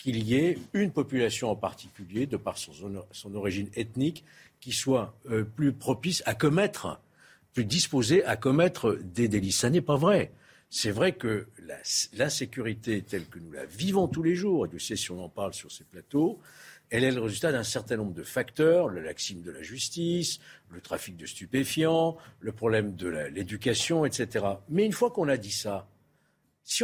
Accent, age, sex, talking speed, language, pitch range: French, 60-79, male, 190 wpm, French, 110-165 Hz